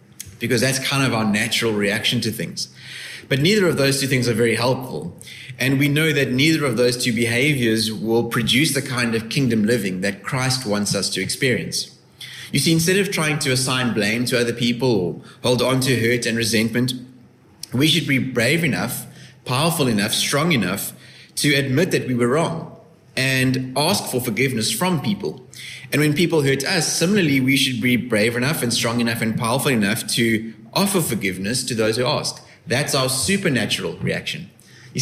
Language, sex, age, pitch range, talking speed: English, male, 20-39, 115-145 Hz, 185 wpm